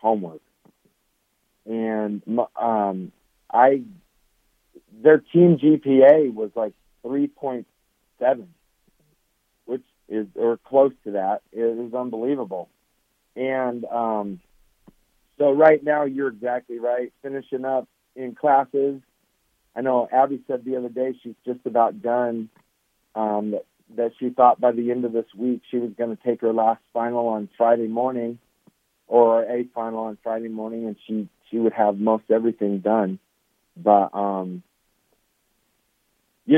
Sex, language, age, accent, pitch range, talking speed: male, English, 50-69, American, 110-130 Hz, 135 wpm